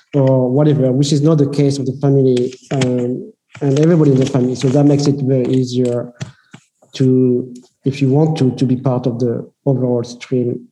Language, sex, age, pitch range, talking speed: English, male, 50-69, 130-150 Hz, 190 wpm